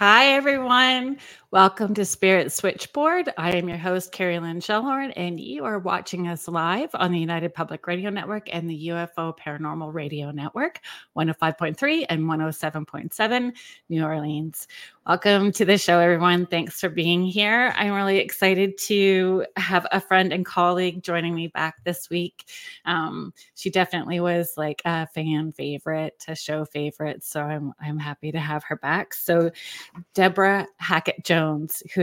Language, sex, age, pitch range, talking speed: English, female, 30-49, 160-190 Hz, 155 wpm